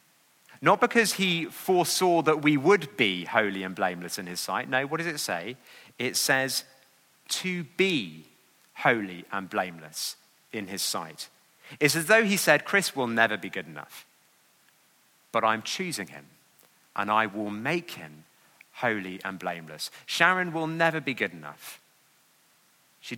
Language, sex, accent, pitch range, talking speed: English, male, British, 95-145 Hz, 155 wpm